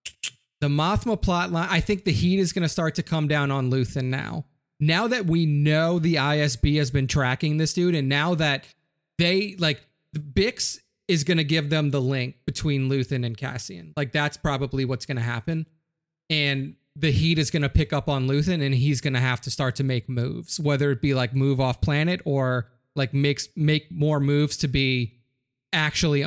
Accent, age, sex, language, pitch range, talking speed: American, 30-49, male, English, 130-155 Hz, 205 wpm